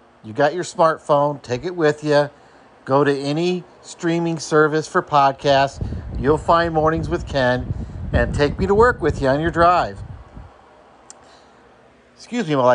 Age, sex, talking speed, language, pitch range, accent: 50-69, male, 155 wpm, English, 110-145 Hz, American